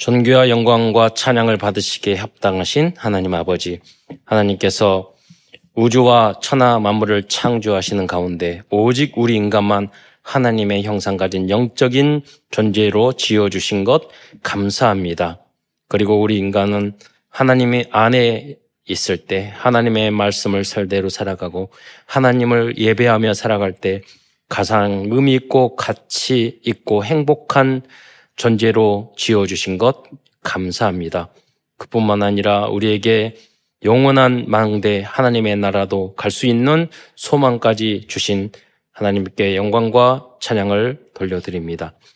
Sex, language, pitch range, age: male, Korean, 100-120 Hz, 20-39